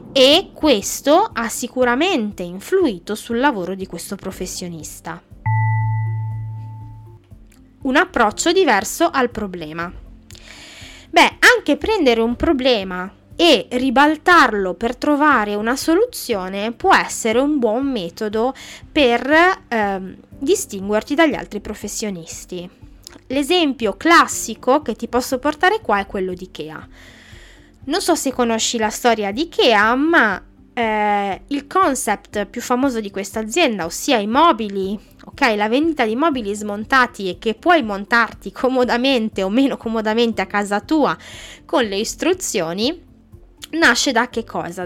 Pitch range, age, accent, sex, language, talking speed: 200-280 Hz, 20-39, native, female, Italian, 125 wpm